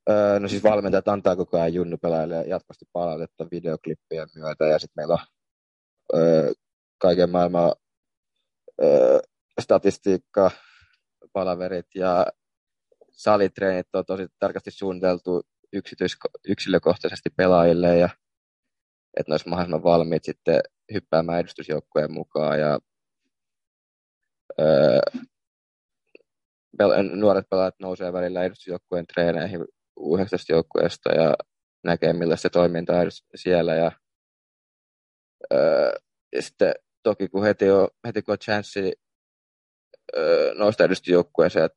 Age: 20-39